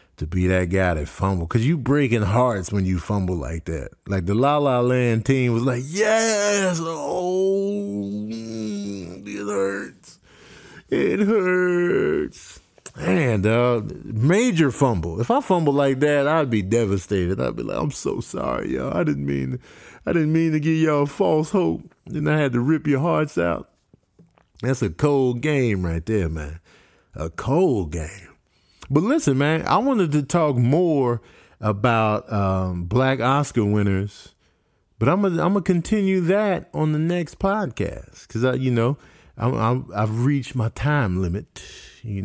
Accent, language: American, English